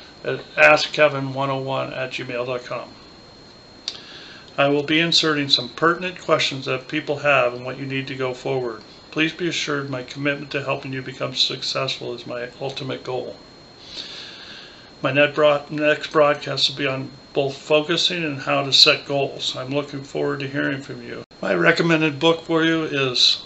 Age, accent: 50-69, American